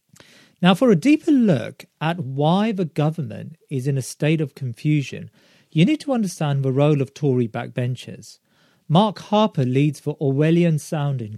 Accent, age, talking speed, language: British, 40-59, 160 wpm, English